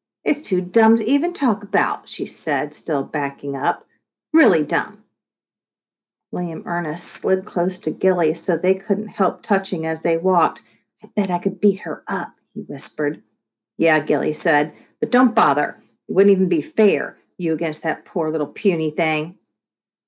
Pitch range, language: 165-205 Hz, English